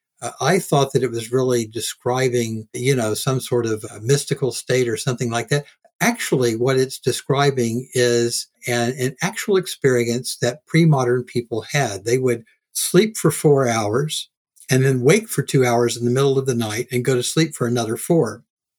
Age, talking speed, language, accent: 60-79, 180 wpm, English, American